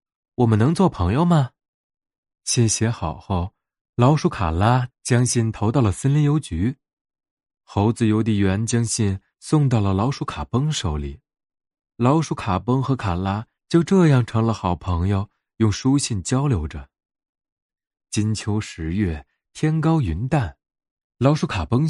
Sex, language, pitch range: male, Chinese, 90-140 Hz